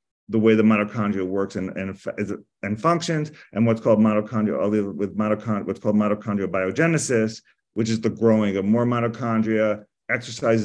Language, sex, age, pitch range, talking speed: English, male, 30-49, 100-115 Hz, 150 wpm